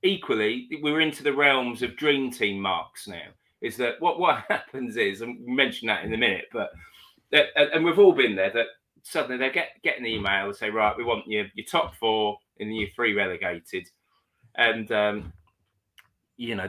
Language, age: English, 20-39